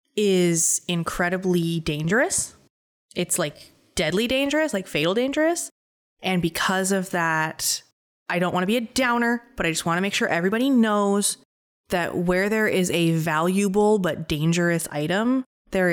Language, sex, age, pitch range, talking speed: English, female, 20-39, 160-210 Hz, 150 wpm